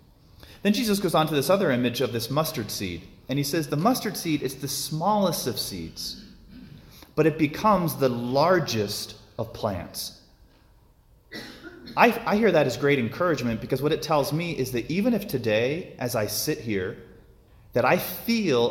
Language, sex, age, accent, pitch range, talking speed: English, male, 30-49, American, 110-155 Hz, 175 wpm